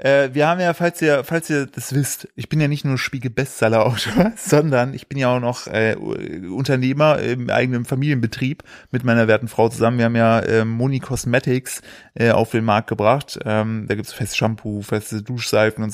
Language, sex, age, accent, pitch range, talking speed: German, male, 30-49, German, 115-150 Hz, 195 wpm